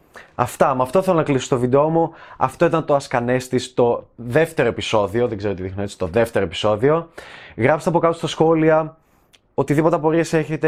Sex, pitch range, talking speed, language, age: male, 125-160 Hz, 180 wpm, Greek, 20-39